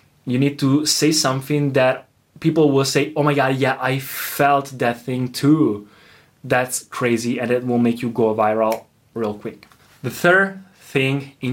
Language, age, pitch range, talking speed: Italian, 20-39, 125-150 Hz, 170 wpm